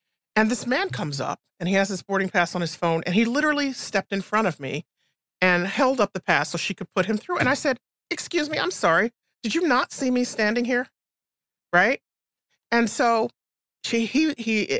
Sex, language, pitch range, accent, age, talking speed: male, English, 165-225 Hz, American, 40-59, 210 wpm